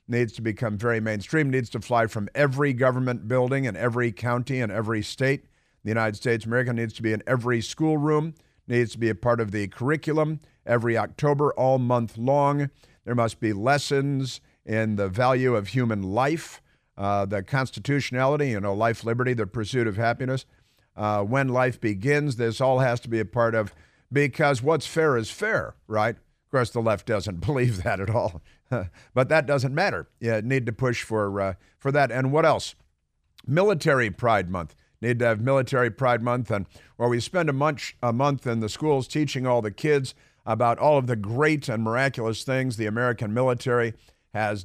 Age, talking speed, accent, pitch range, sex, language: 50-69, 190 wpm, American, 110-135 Hz, male, English